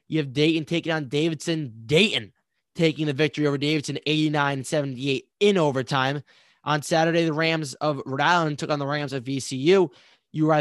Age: 20-39